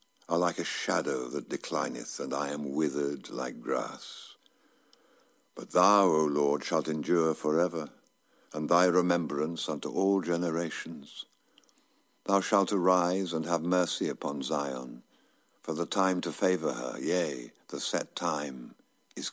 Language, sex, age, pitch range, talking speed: English, male, 60-79, 85-100 Hz, 140 wpm